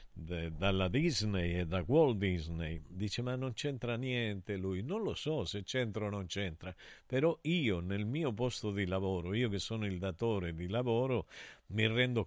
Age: 50-69